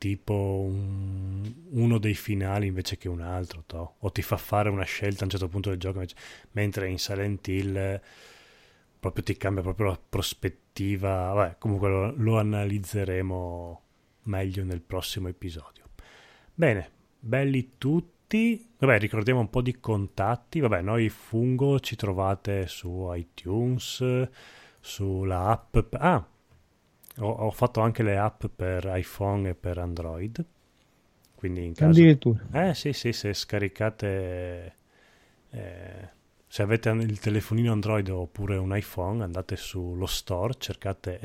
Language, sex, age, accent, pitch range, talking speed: Italian, male, 30-49, native, 90-110 Hz, 135 wpm